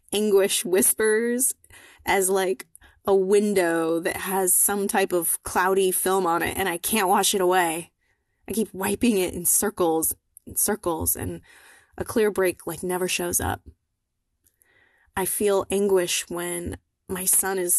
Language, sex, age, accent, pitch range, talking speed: English, female, 20-39, American, 180-210 Hz, 150 wpm